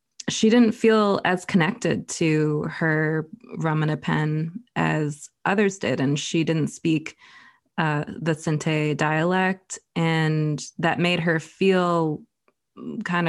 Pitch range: 155-190 Hz